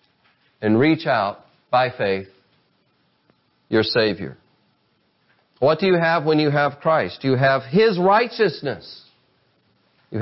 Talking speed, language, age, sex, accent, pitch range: 115 wpm, English, 50-69, male, American, 140-195 Hz